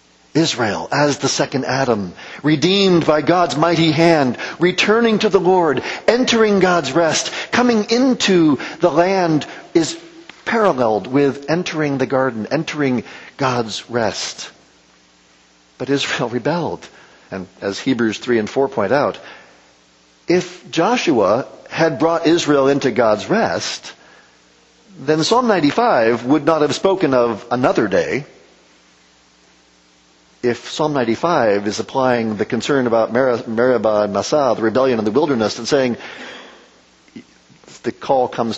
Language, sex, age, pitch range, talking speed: English, male, 50-69, 110-165 Hz, 125 wpm